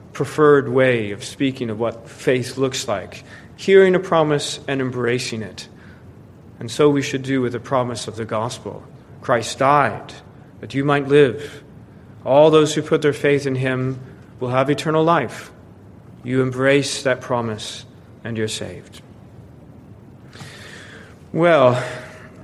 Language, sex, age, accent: English, male, 40-59, American